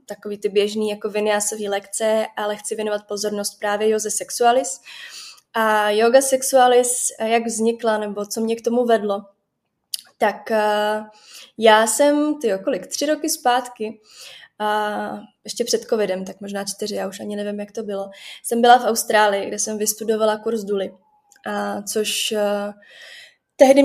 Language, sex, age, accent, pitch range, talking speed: Czech, female, 20-39, native, 210-245 Hz, 145 wpm